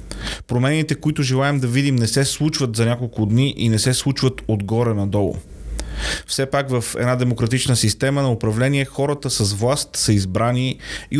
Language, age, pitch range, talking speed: Bulgarian, 30-49, 105-130 Hz, 165 wpm